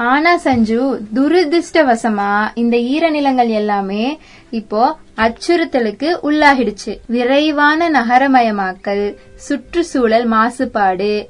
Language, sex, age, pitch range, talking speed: Tamil, female, 20-39, 215-285 Hz, 70 wpm